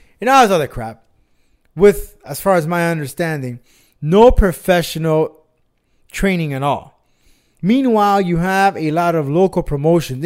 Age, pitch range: 30-49, 135-185 Hz